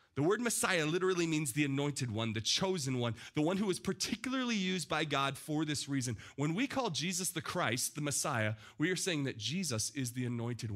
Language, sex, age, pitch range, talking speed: English, male, 30-49, 120-175 Hz, 210 wpm